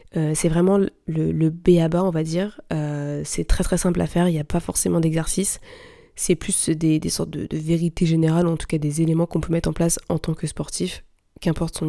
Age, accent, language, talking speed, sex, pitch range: 20-39, French, French, 235 wpm, female, 165-195 Hz